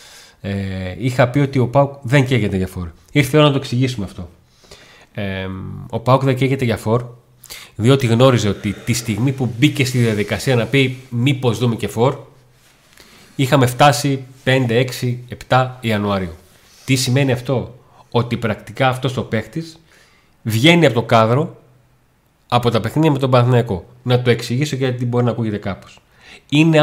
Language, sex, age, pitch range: Greek, male, 30-49, 110-135 Hz